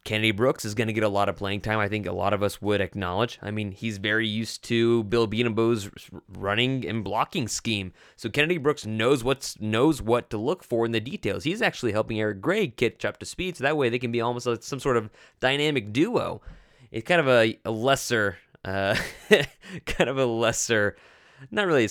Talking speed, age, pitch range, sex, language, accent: 215 wpm, 20-39, 105-140 Hz, male, English, American